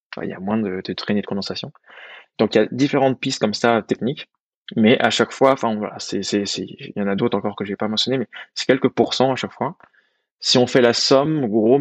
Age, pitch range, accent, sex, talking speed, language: 20-39, 105-125 Hz, French, male, 265 wpm, French